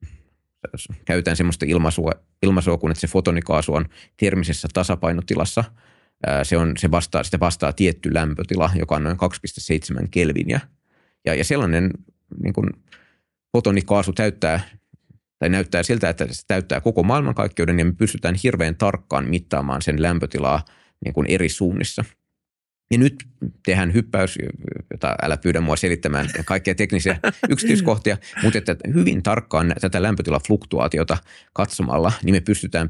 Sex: male